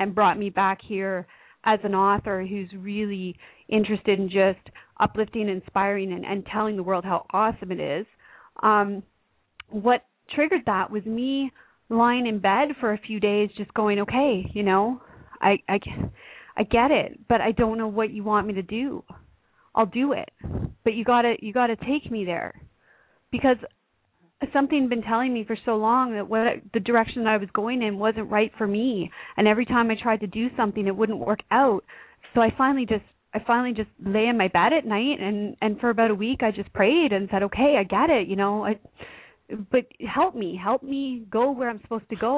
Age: 30-49